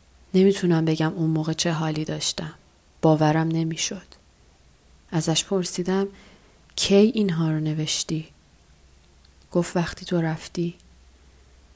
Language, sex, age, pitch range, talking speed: Persian, female, 30-49, 155-180 Hz, 95 wpm